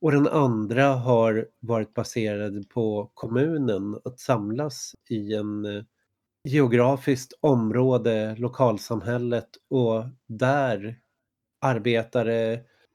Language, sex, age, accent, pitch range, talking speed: Swedish, male, 30-49, native, 110-130 Hz, 85 wpm